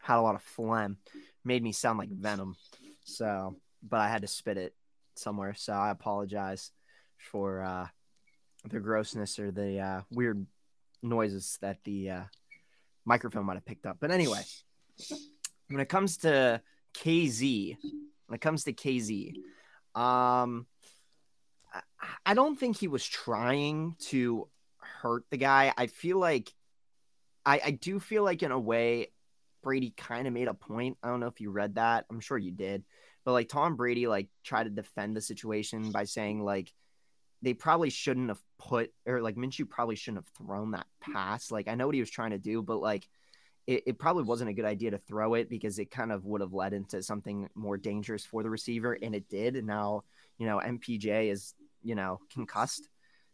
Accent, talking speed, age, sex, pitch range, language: American, 185 wpm, 20-39, male, 105-130 Hz, English